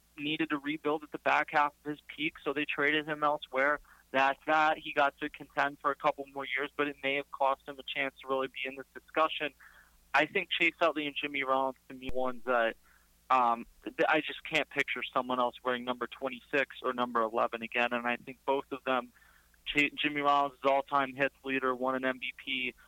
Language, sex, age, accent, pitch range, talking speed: English, male, 30-49, American, 130-155 Hz, 220 wpm